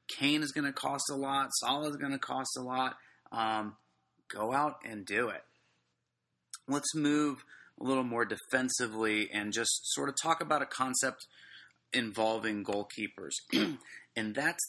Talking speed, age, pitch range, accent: 155 wpm, 30-49, 115-140 Hz, American